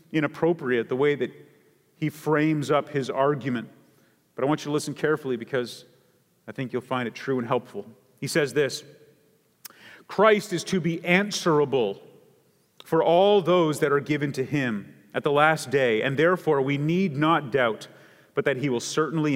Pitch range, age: 140-175 Hz, 40-59